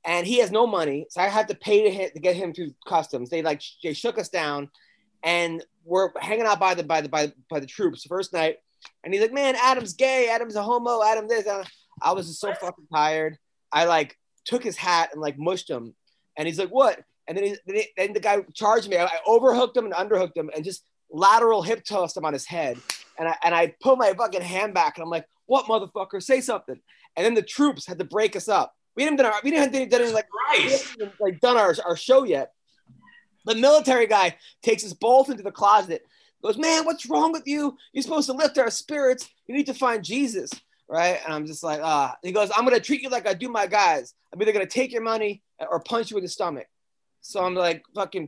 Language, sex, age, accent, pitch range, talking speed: English, male, 20-39, American, 170-245 Hz, 245 wpm